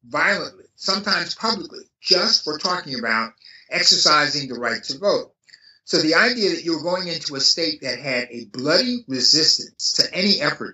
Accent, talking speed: American, 160 wpm